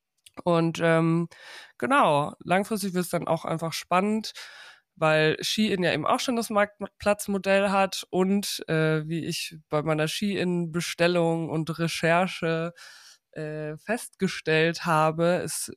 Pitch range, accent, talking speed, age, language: 155-190 Hz, German, 120 wpm, 20-39, German